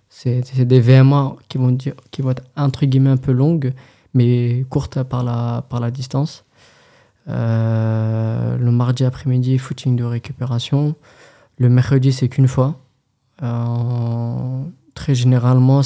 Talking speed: 140 wpm